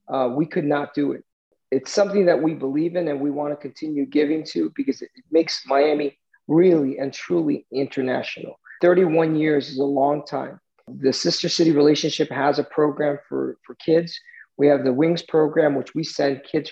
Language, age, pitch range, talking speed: English, 40-59, 140-170 Hz, 190 wpm